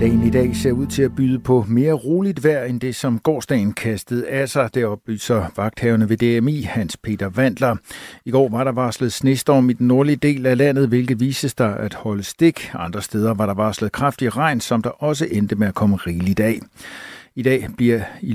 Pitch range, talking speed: 110-135 Hz, 215 wpm